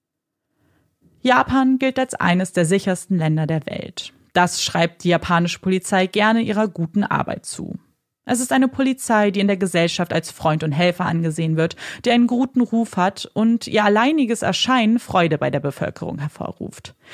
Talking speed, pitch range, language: 165 wpm, 170-245 Hz, German